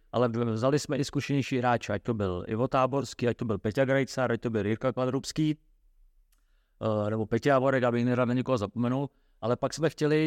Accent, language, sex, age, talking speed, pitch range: Czech, English, male, 30-49, 175 wpm, 115-135 Hz